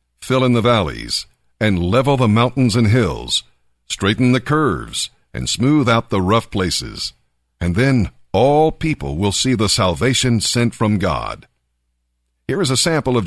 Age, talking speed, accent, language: 60-79, 160 wpm, American, English